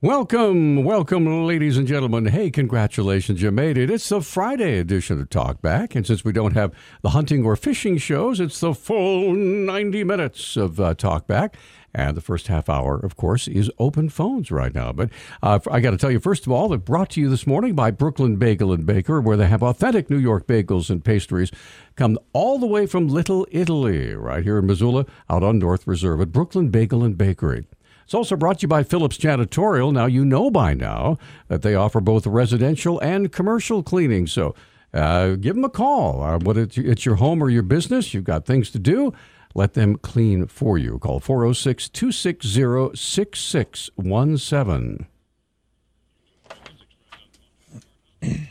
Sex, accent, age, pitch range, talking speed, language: male, American, 60-79, 105-160 Hz, 175 wpm, English